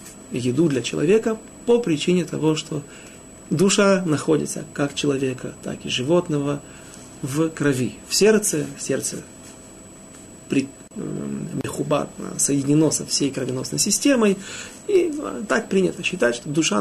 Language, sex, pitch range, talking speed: Russian, male, 145-190 Hz, 110 wpm